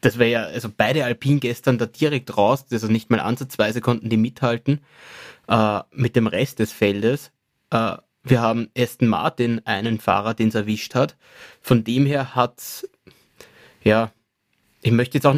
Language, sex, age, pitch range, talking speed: German, male, 20-39, 115-140 Hz, 170 wpm